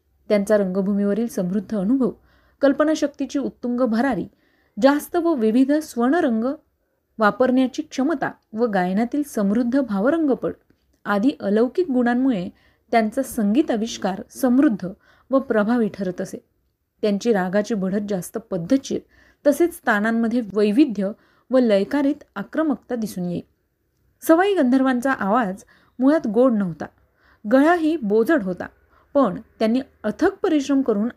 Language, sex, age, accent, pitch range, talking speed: Marathi, female, 30-49, native, 210-275 Hz, 105 wpm